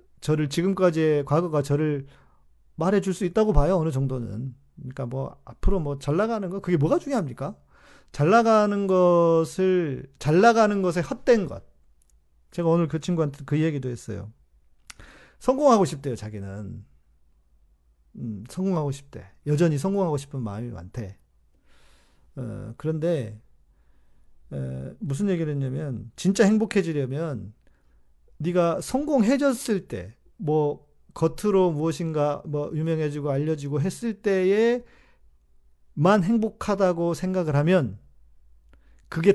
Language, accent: Korean, native